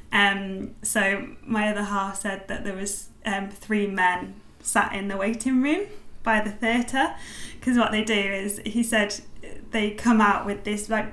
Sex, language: female, English